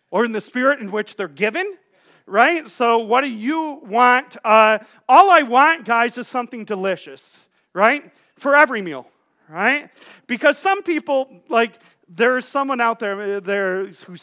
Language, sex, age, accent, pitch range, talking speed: English, male, 40-59, American, 195-275 Hz, 160 wpm